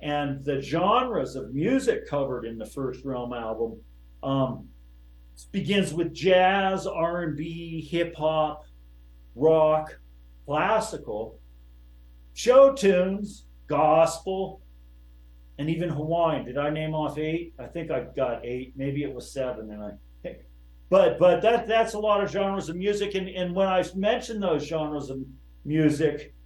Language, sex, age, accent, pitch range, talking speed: English, male, 50-69, American, 130-170 Hz, 145 wpm